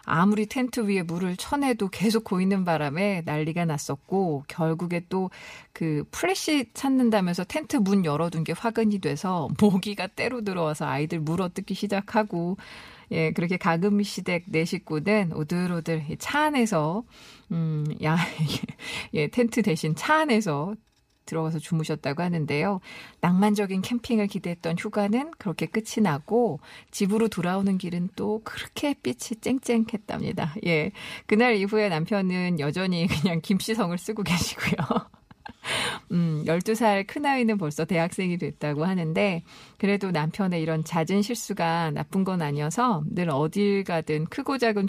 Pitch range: 160-215 Hz